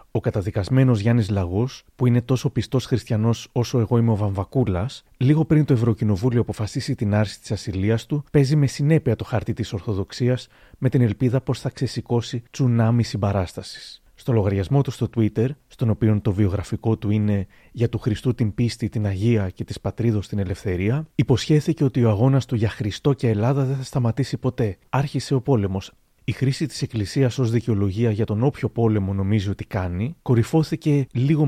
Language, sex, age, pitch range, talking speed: Greek, male, 30-49, 110-130 Hz, 175 wpm